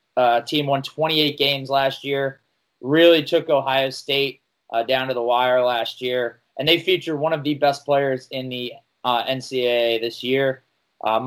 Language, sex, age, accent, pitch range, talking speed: English, male, 20-39, American, 125-150 Hz, 175 wpm